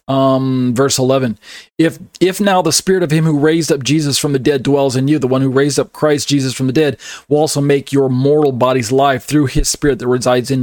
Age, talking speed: 40-59, 245 wpm